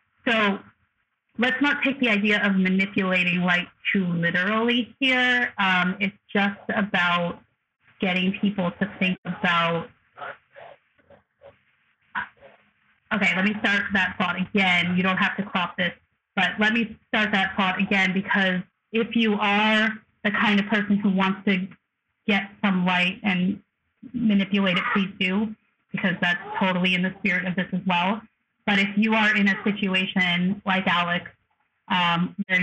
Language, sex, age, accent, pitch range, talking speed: English, female, 30-49, American, 180-205 Hz, 145 wpm